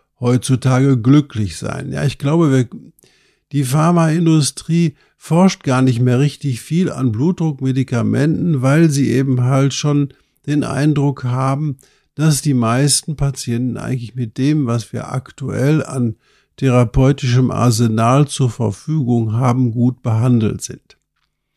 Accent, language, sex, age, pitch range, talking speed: German, German, male, 50-69, 125-150 Hz, 120 wpm